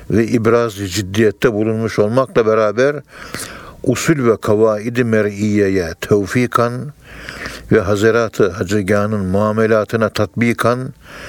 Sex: male